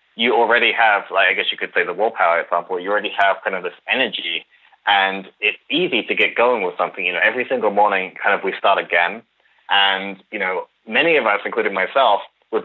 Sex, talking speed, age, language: male, 220 wpm, 20-39, English